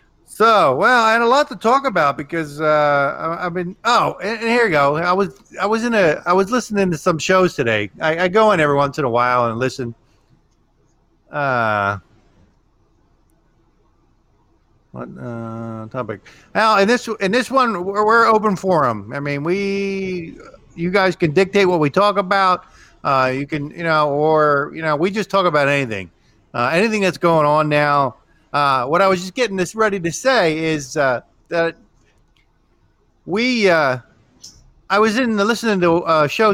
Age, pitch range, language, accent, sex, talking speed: 50-69, 120-190 Hz, English, American, male, 180 wpm